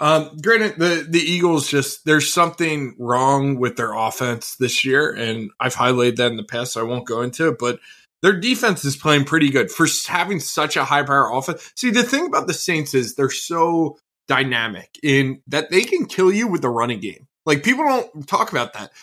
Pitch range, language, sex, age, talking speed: 140-200 Hz, English, male, 20-39, 210 wpm